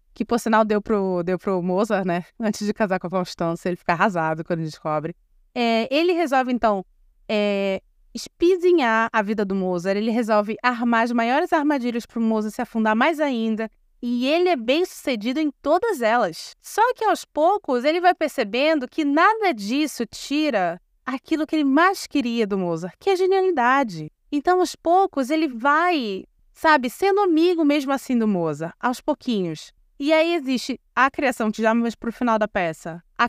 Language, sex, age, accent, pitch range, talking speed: Portuguese, female, 20-39, Brazilian, 210-295 Hz, 180 wpm